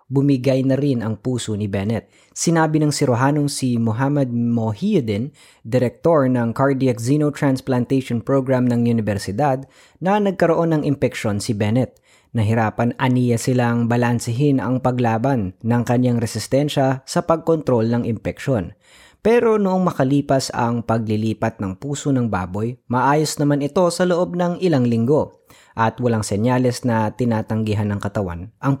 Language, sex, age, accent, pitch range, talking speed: Filipino, female, 20-39, native, 110-145 Hz, 135 wpm